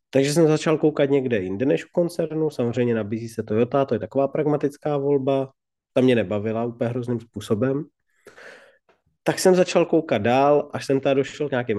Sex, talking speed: male, 180 wpm